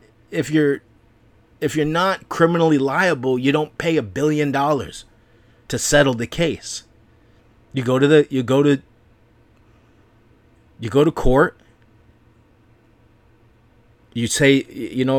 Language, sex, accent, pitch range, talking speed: English, male, American, 115-150 Hz, 125 wpm